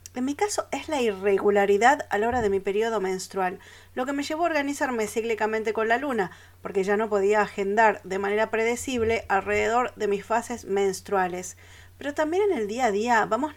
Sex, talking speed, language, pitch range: female, 195 wpm, Spanish, 195-240 Hz